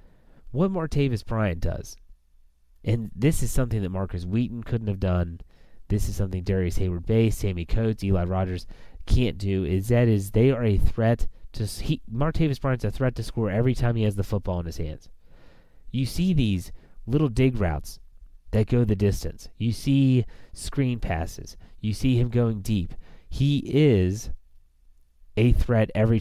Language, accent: English, American